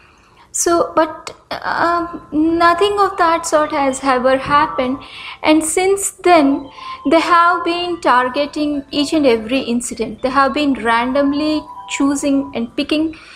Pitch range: 255-315 Hz